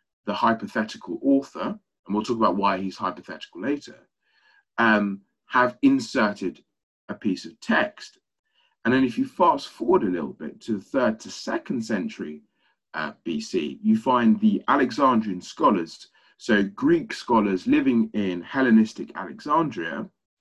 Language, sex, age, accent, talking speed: English, male, 30-49, British, 140 wpm